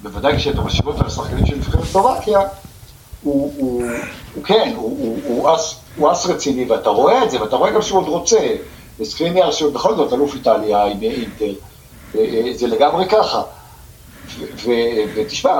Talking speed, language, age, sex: 170 wpm, Hebrew, 60-79, male